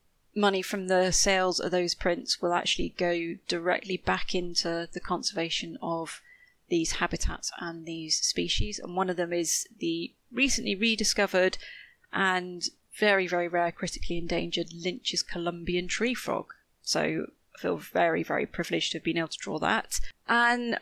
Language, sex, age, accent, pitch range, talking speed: English, female, 30-49, British, 175-205 Hz, 155 wpm